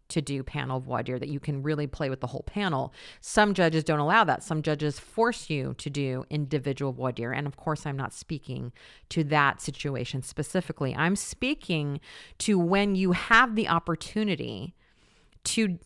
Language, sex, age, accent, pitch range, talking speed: English, female, 40-59, American, 150-215 Hz, 180 wpm